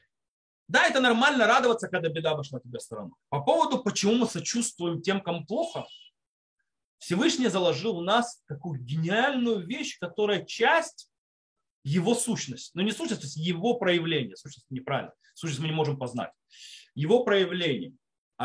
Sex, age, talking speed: male, 30-49, 145 wpm